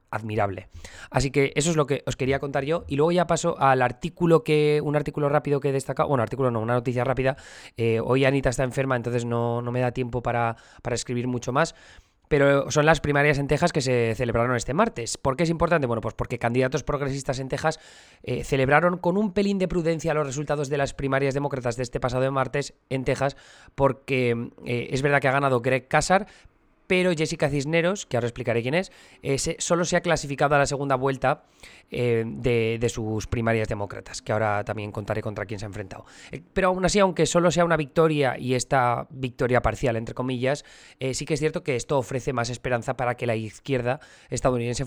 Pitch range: 120-155 Hz